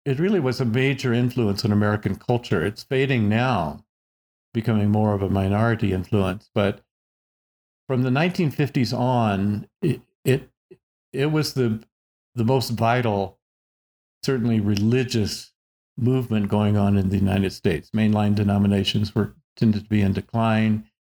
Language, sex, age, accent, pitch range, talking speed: English, male, 50-69, American, 105-125 Hz, 135 wpm